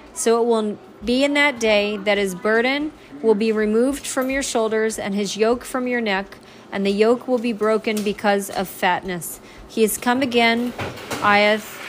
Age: 40-59